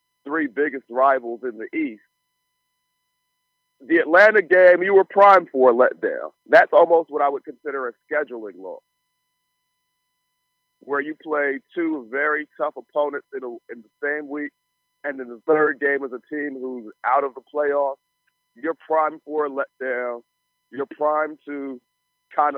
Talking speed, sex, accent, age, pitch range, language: 155 wpm, male, American, 40-59, 135-200 Hz, English